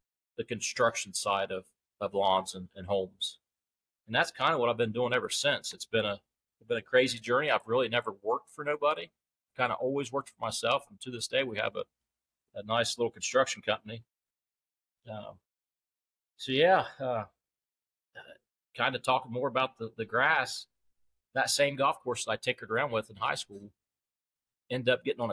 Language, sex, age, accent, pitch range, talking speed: English, male, 40-59, American, 100-125 Hz, 185 wpm